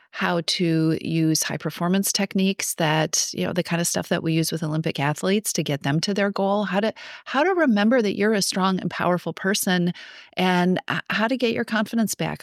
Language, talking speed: English, 210 wpm